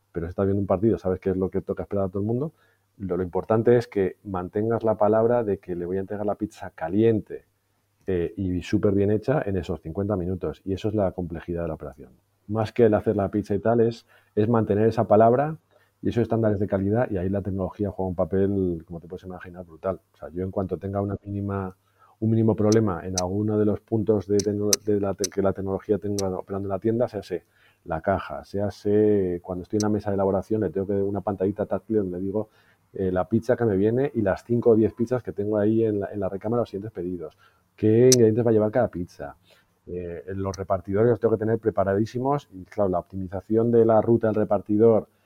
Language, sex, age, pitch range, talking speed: Spanish, male, 40-59, 95-110 Hz, 235 wpm